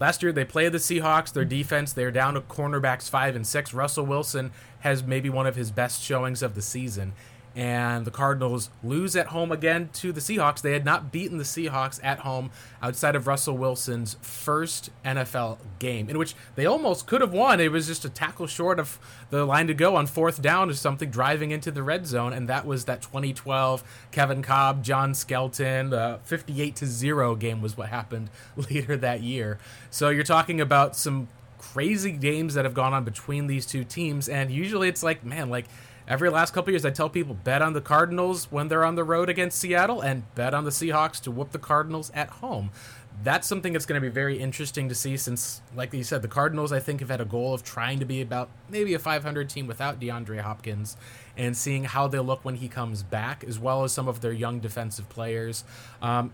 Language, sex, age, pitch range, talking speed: English, male, 20-39, 120-150 Hz, 215 wpm